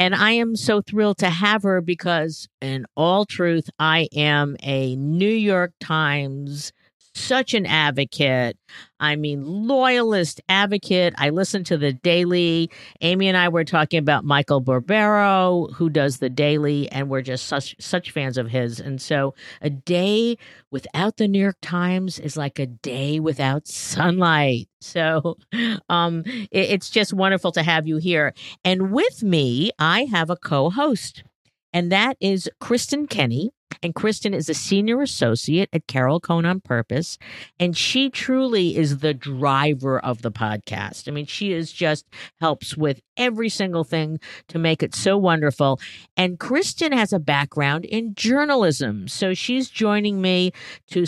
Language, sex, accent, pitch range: English, female, American, 145-195 Hz